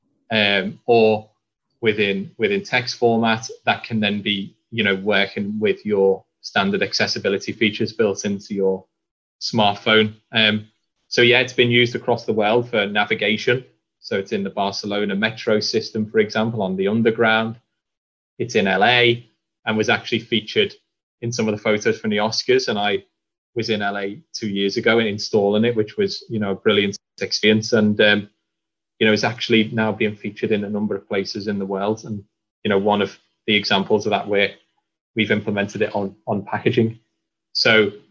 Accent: British